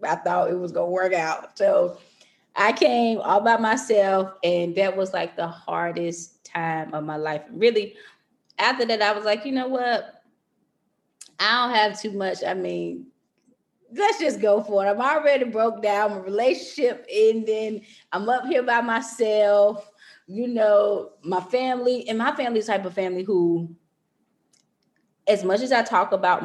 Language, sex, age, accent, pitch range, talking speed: English, female, 20-39, American, 170-220 Hz, 170 wpm